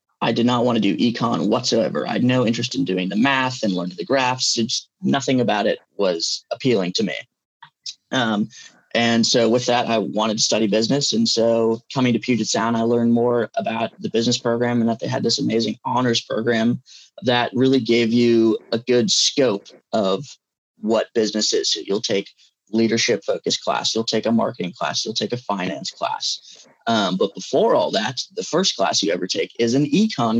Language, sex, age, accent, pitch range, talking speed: English, male, 20-39, American, 115-125 Hz, 195 wpm